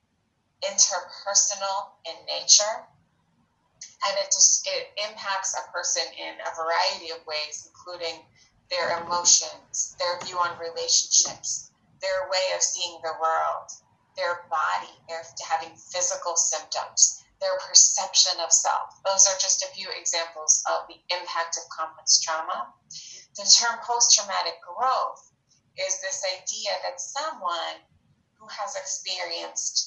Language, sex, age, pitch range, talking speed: English, female, 30-49, 160-200 Hz, 125 wpm